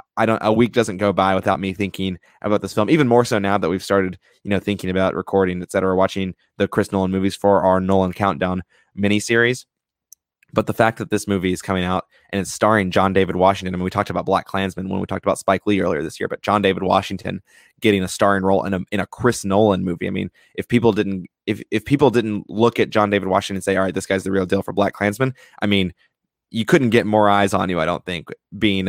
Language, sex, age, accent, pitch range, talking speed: English, male, 20-39, American, 95-105 Hz, 260 wpm